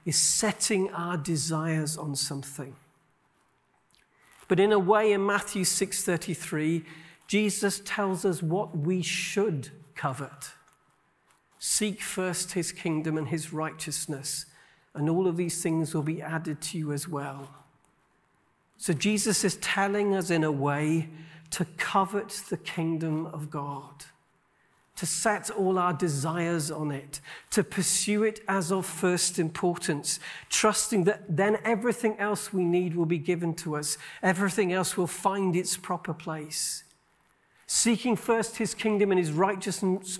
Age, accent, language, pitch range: 50-69, British, English, 160-200 Hz